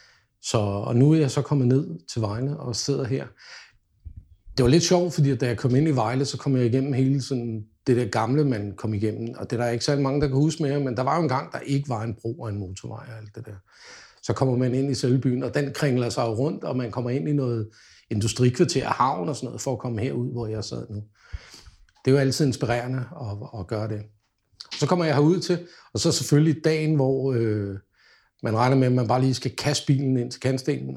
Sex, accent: male, native